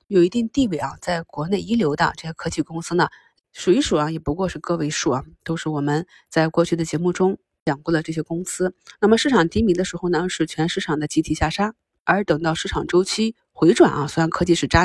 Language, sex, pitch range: Chinese, female, 155-185 Hz